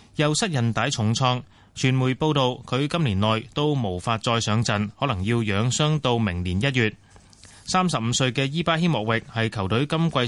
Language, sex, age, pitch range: Chinese, male, 30-49, 105-140 Hz